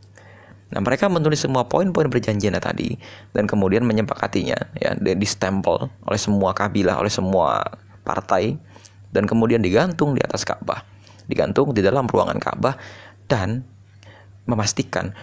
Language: Indonesian